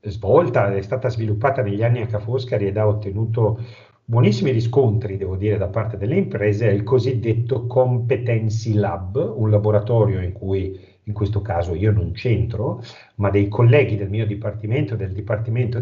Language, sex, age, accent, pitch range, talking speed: Italian, male, 40-59, native, 105-125 Hz, 160 wpm